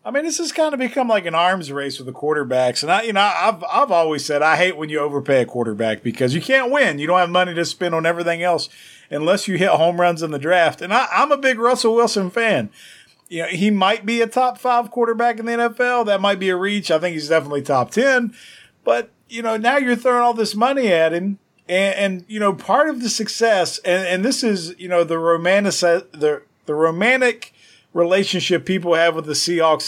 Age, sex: 40-59, male